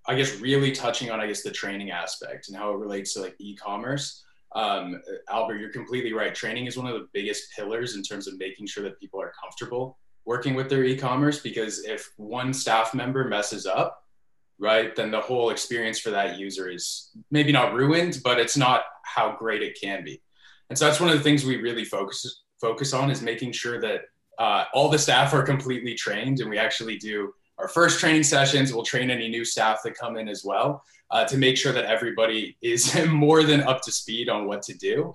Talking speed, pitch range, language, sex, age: 215 wpm, 110-140 Hz, English, male, 20-39